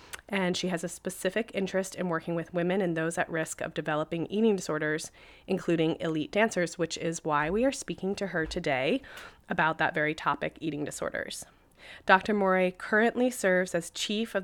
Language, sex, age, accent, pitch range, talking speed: English, female, 20-39, American, 165-195 Hz, 180 wpm